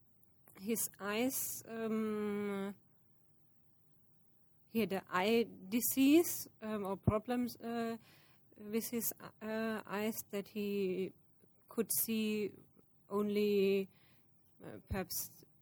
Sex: female